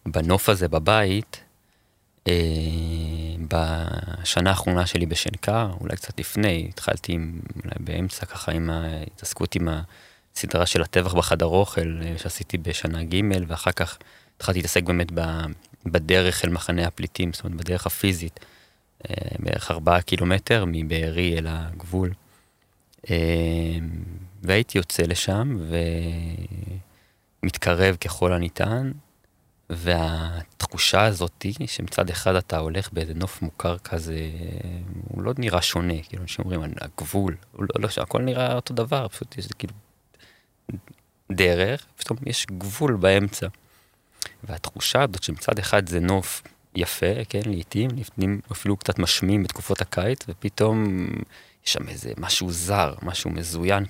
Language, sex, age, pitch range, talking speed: Hebrew, male, 30-49, 85-105 Hz, 115 wpm